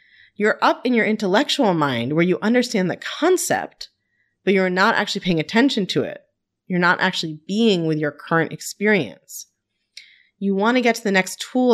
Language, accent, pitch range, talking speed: English, American, 160-230 Hz, 180 wpm